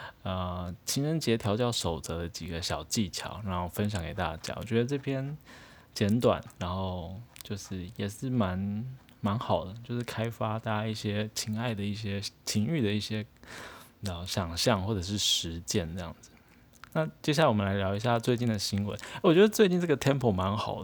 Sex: male